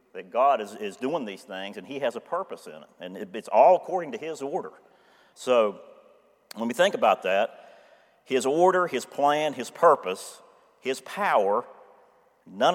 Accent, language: American, English